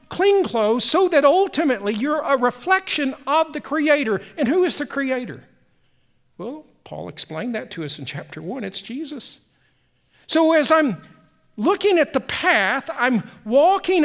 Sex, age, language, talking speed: male, 50-69, English, 155 wpm